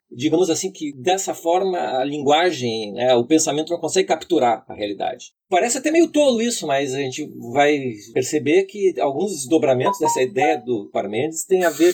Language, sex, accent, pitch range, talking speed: Portuguese, male, Brazilian, 150-220 Hz, 175 wpm